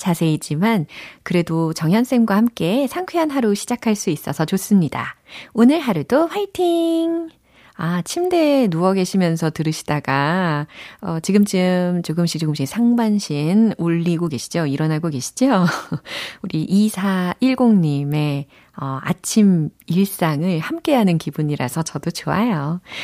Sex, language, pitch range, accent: female, Korean, 155-225 Hz, native